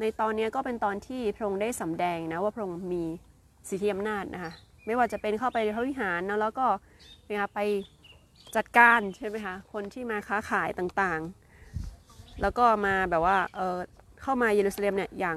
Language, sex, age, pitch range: Thai, female, 20-39, 175-225 Hz